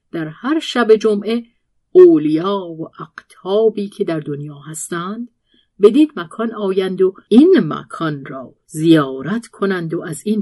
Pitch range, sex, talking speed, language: 155-235 Hz, female, 130 wpm, Persian